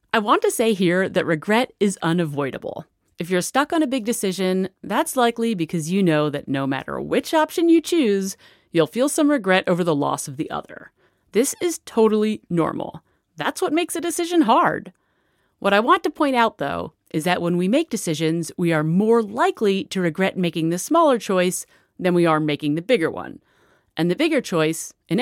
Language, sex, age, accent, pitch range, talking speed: English, female, 30-49, American, 170-235 Hz, 195 wpm